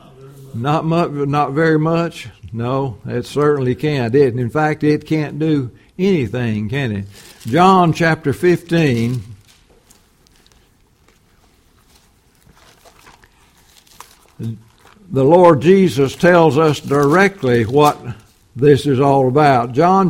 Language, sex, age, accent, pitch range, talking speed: English, male, 60-79, American, 135-175 Hz, 100 wpm